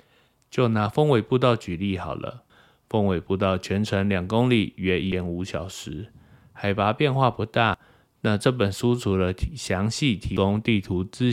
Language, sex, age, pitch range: Chinese, male, 20-39, 90-115 Hz